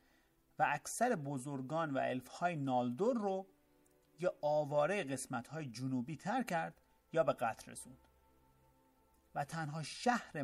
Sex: male